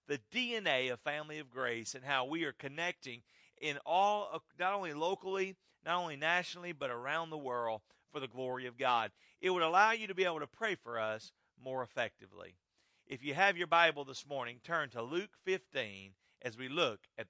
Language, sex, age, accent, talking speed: English, male, 40-59, American, 195 wpm